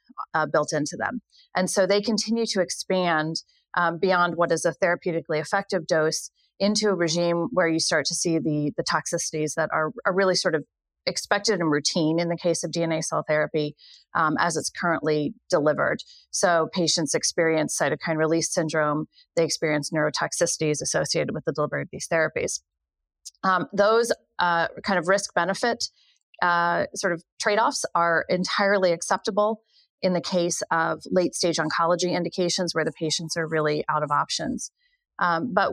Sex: female